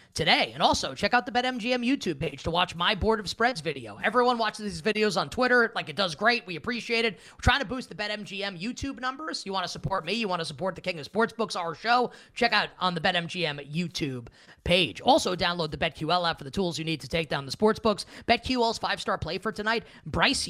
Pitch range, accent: 165-210 Hz, American